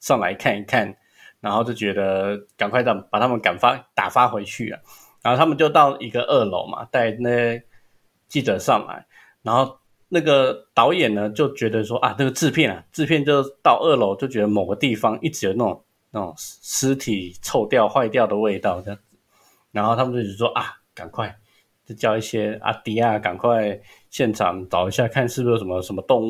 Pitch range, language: 105-130 Hz, Chinese